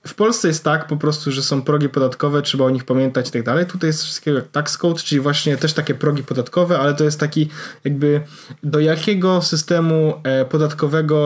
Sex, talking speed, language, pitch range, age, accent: male, 195 wpm, Polish, 135-160 Hz, 20-39, native